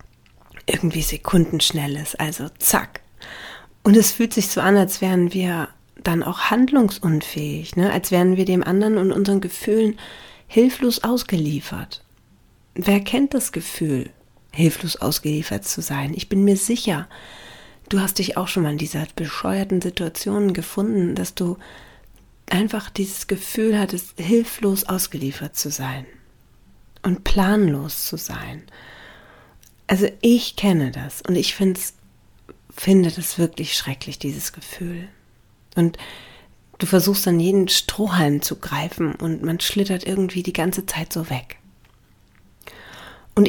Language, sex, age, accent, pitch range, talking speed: German, female, 40-59, German, 150-195 Hz, 130 wpm